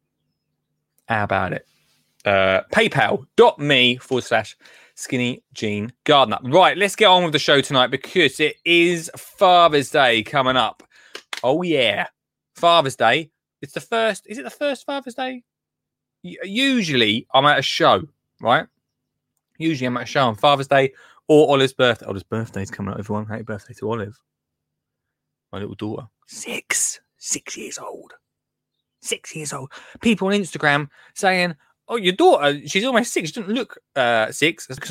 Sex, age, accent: male, 20-39, British